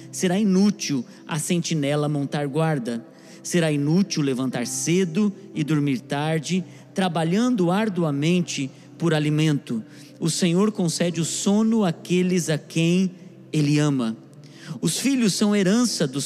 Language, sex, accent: Portuguese, male, Brazilian